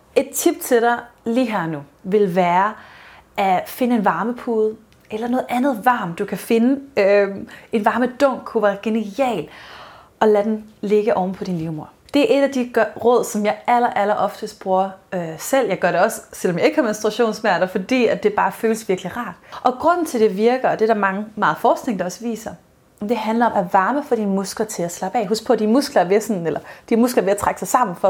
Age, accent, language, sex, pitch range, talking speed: 30-49, native, Danish, female, 200-245 Hz, 235 wpm